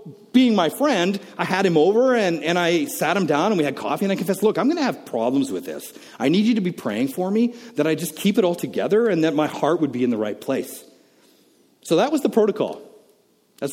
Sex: male